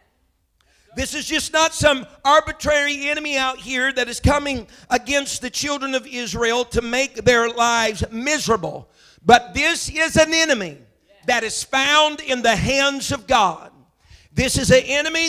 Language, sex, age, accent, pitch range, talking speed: English, male, 50-69, American, 240-295 Hz, 155 wpm